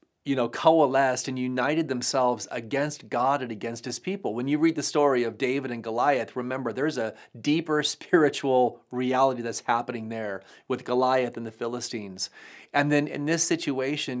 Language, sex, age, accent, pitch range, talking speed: English, male, 30-49, American, 115-145 Hz, 170 wpm